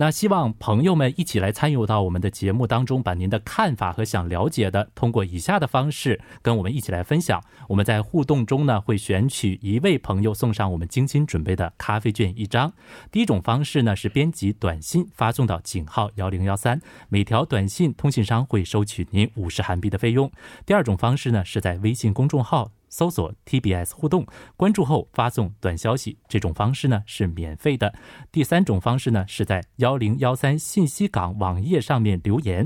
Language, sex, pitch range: Korean, male, 100-140 Hz